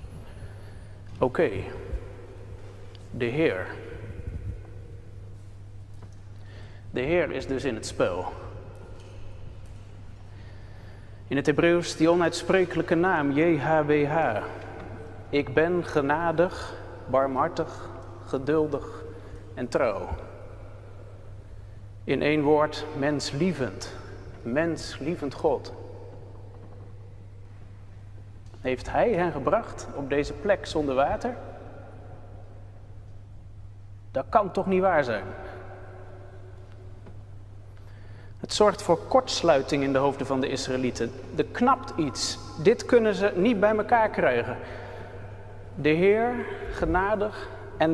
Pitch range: 100-155 Hz